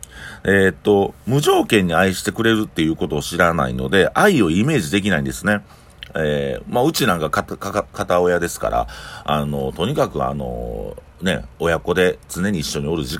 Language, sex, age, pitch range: Japanese, male, 40-59, 75-120 Hz